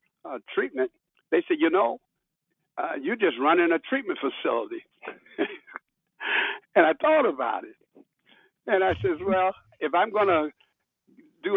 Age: 60-79